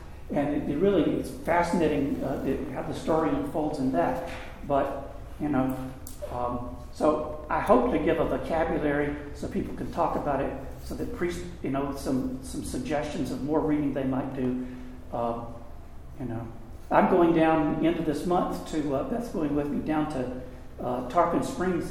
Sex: male